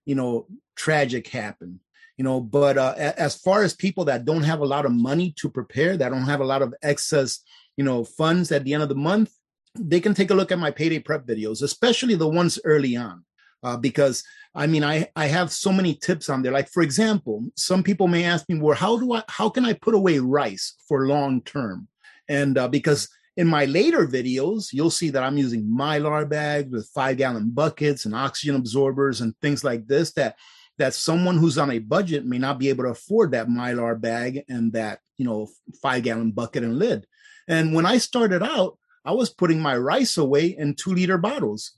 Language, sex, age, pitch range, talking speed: English, male, 30-49, 135-180 Hz, 210 wpm